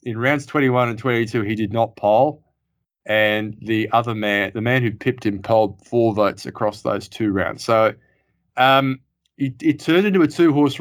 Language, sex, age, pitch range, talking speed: English, male, 20-39, 105-130 Hz, 185 wpm